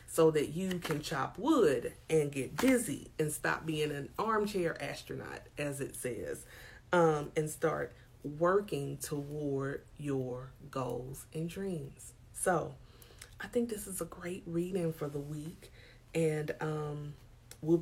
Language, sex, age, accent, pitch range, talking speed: English, female, 30-49, American, 135-180 Hz, 140 wpm